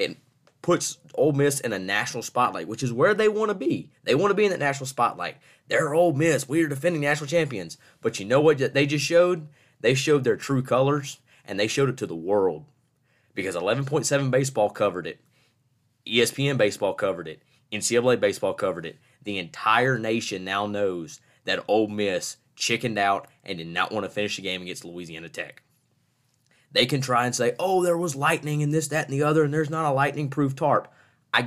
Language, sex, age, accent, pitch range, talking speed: English, male, 20-39, American, 110-145 Hz, 200 wpm